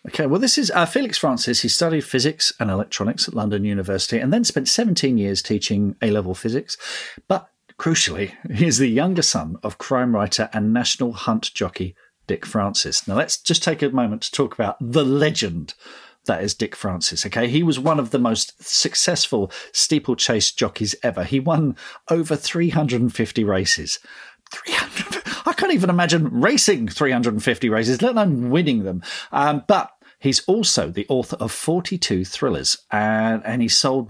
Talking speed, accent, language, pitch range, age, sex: 170 wpm, British, English, 110-160 Hz, 40-59, male